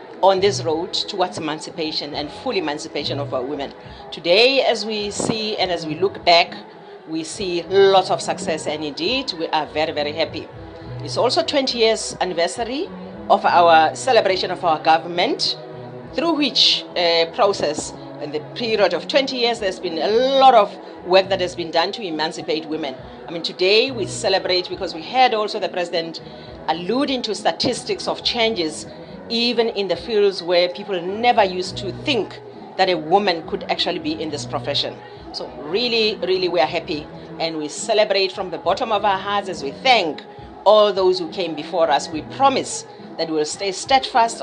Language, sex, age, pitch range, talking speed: English, female, 40-59, 165-235 Hz, 175 wpm